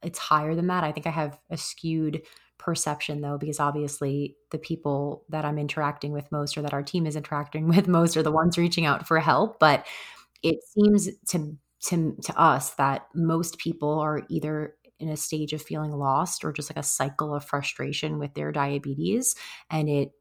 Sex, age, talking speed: female, 30-49, 195 wpm